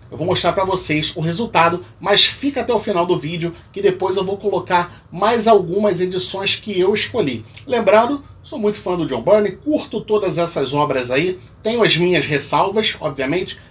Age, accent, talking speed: 40-59, Brazilian, 185 wpm